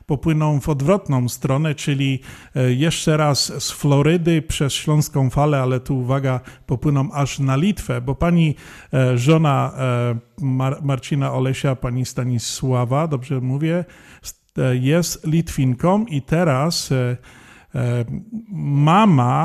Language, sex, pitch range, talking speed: Polish, male, 130-155 Hz, 100 wpm